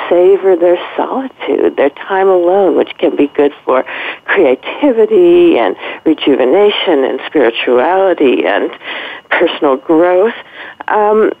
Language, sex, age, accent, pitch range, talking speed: English, female, 50-69, American, 165-275 Hz, 105 wpm